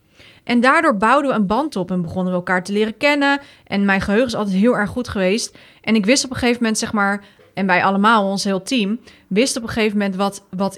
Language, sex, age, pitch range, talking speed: Dutch, female, 30-49, 185-225 Hz, 250 wpm